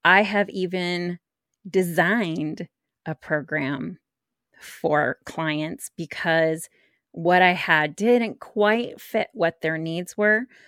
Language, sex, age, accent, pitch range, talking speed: English, female, 30-49, American, 155-195 Hz, 105 wpm